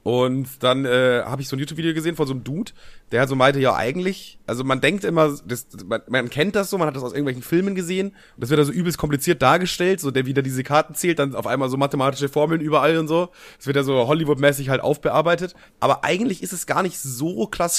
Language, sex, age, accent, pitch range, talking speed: German, male, 30-49, German, 130-165 Hz, 245 wpm